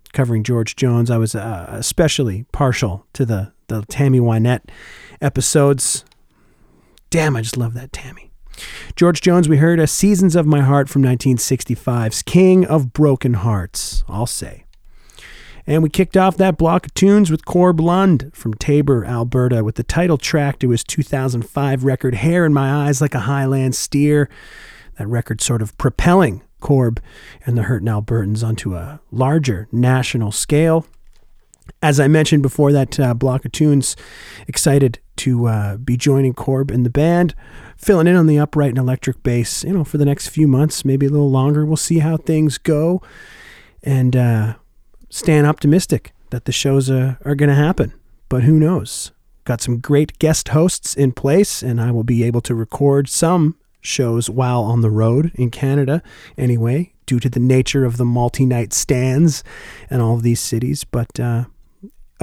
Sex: male